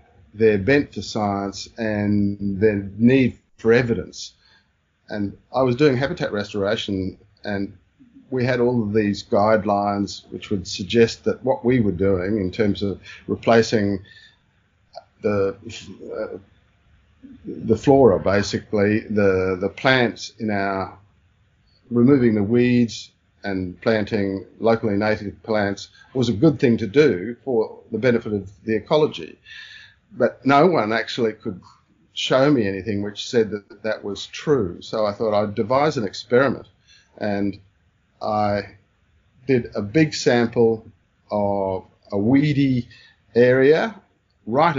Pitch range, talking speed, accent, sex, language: 100-120 Hz, 130 wpm, Australian, male, English